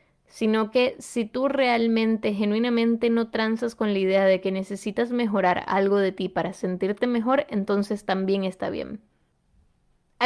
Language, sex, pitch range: Spanish, female, 205-240 Hz